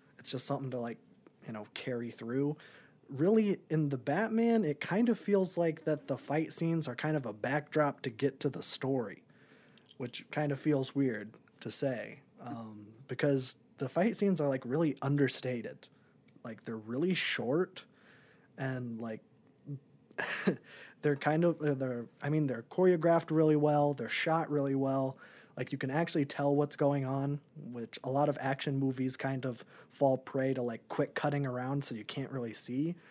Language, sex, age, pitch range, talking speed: English, male, 20-39, 125-155 Hz, 175 wpm